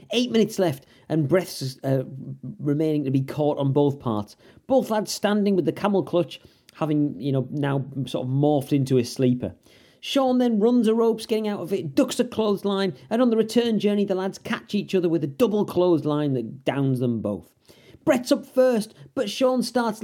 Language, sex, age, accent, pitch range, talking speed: English, male, 40-59, British, 150-235 Hz, 200 wpm